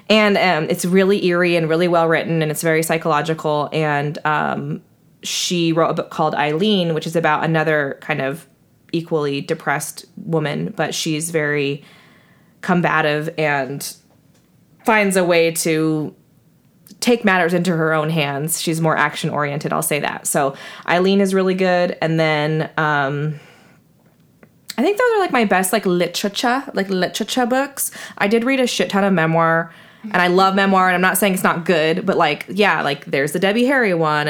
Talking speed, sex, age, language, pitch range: 175 wpm, female, 20-39, English, 155-190 Hz